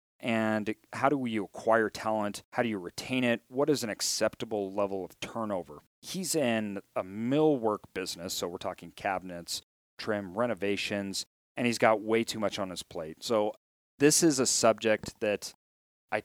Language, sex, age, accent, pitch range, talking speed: English, male, 40-59, American, 100-120 Hz, 165 wpm